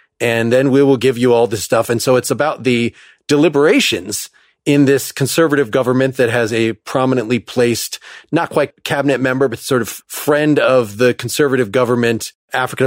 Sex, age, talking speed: male, 30-49, 175 wpm